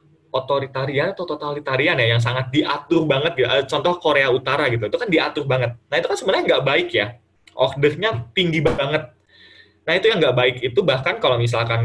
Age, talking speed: 20-39, 180 wpm